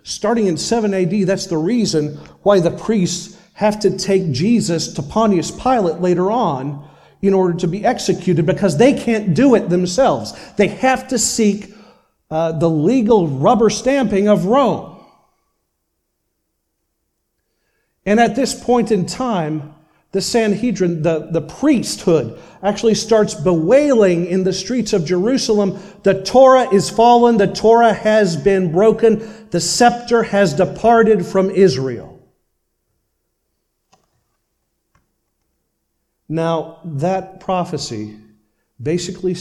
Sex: male